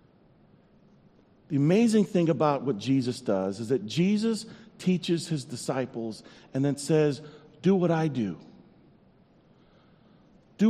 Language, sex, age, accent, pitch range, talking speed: English, male, 50-69, American, 135-185 Hz, 120 wpm